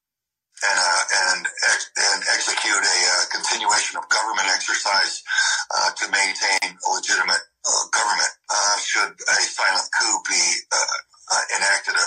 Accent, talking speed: American, 140 wpm